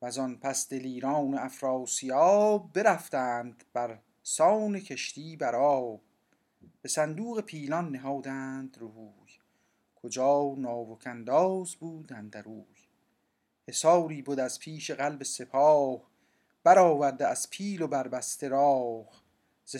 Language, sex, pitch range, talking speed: Persian, male, 130-155 Hz, 100 wpm